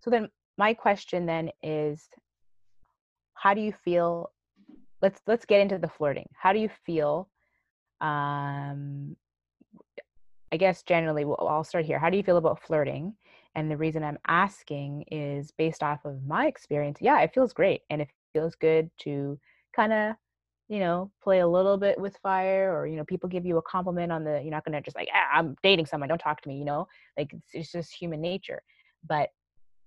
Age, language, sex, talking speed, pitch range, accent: 20-39, English, female, 195 wpm, 145-185 Hz, American